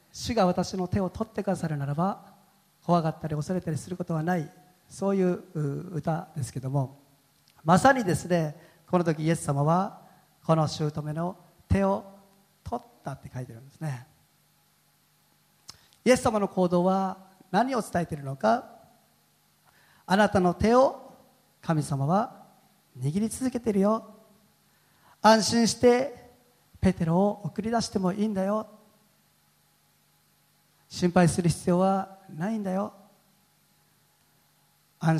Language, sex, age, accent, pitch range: Japanese, male, 40-59, native, 155-215 Hz